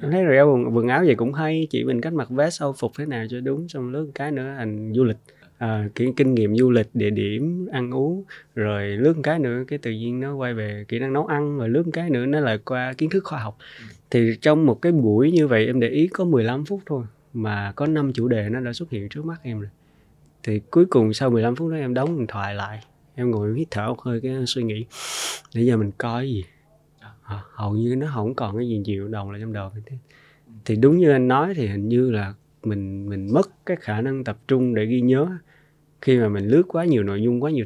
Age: 20-39